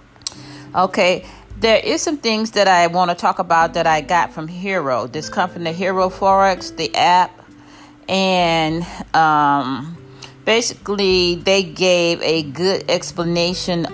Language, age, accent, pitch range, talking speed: English, 40-59, American, 145-185 Hz, 140 wpm